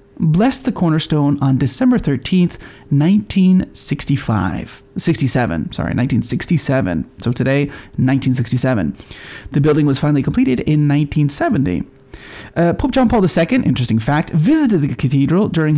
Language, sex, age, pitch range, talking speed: English, male, 30-49, 135-195 Hz, 115 wpm